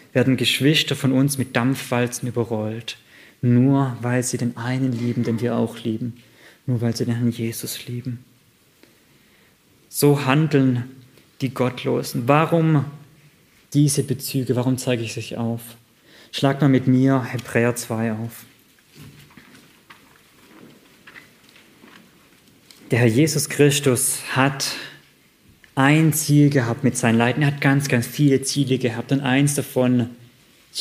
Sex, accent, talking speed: male, German, 125 wpm